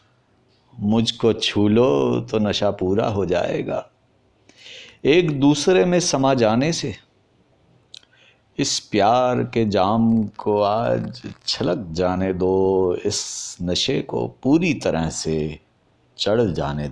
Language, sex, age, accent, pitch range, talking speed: Hindi, male, 50-69, native, 95-125 Hz, 110 wpm